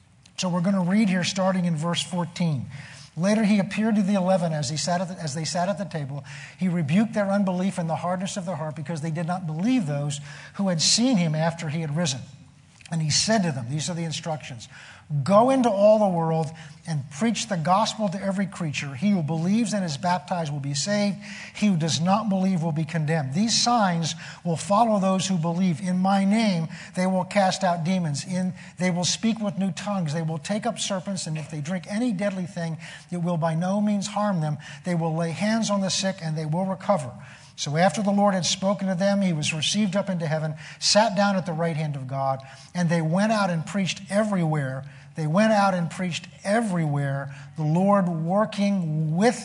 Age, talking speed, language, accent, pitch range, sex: 50-69, 215 wpm, English, American, 155-195 Hz, male